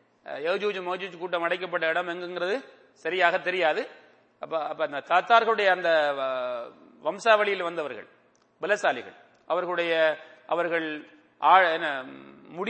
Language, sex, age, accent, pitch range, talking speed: English, male, 30-49, Indian, 165-210 Hz, 75 wpm